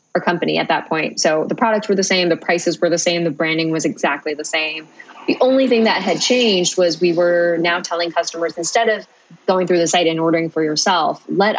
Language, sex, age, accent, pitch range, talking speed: English, female, 20-39, American, 170-190 Hz, 235 wpm